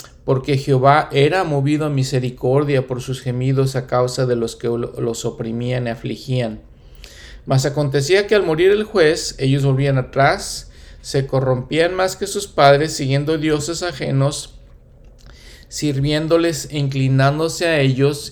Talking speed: 135 wpm